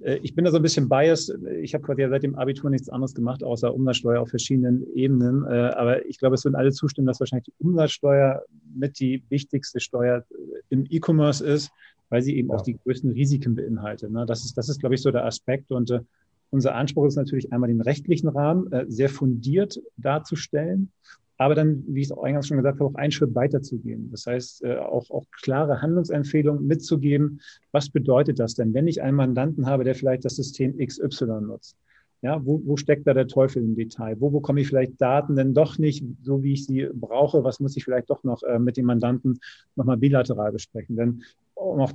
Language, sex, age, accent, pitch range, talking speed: German, male, 40-59, German, 125-145 Hz, 200 wpm